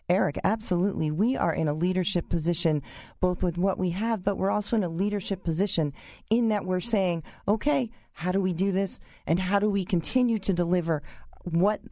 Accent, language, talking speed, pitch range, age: American, English, 190 wpm, 150-195 Hz, 40-59